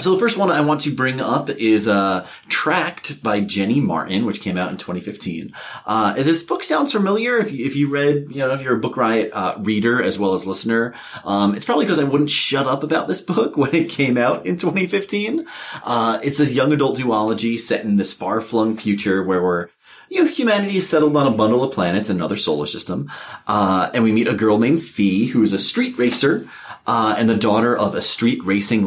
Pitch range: 100-145 Hz